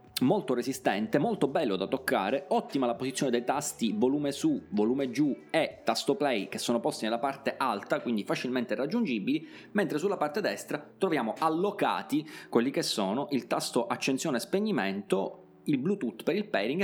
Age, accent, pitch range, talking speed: 30-49, native, 125-190 Hz, 165 wpm